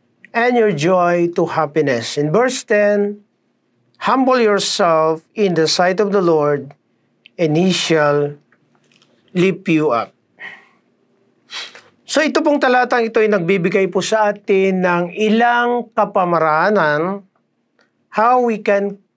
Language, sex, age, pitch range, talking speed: Filipino, male, 40-59, 160-210 Hz, 120 wpm